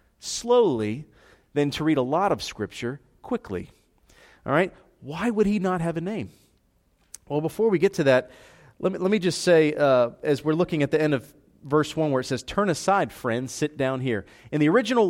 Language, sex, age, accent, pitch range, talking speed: English, male, 40-59, American, 140-195 Hz, 205 wpm